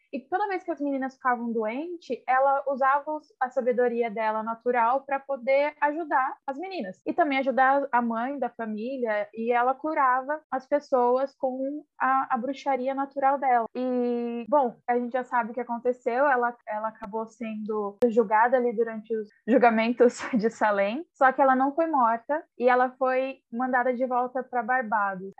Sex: female